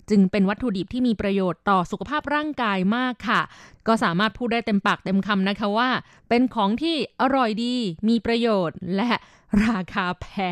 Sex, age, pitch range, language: female, 20-39, 190-240 Hz, Thai